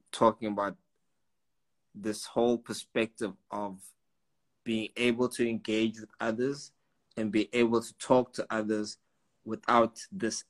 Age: 20-39